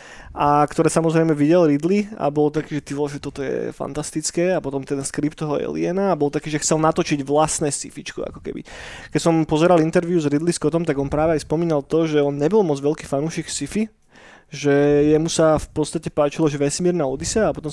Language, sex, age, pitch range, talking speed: Slovak, male, 20-39, 145-165 Hz, 205 wpm